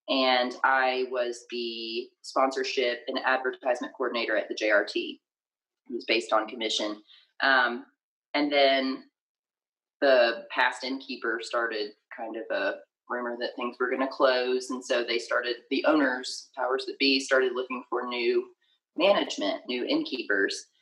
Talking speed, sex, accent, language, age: 140 wpm, female, American, English, 30-49